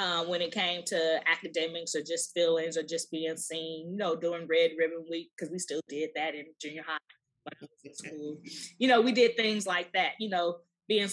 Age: 20-39